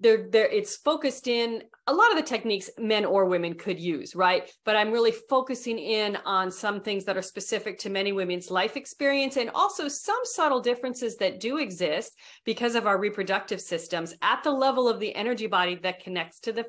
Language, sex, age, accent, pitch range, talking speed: English, female, 40-59, American, 185-235 Hz, 195 wpm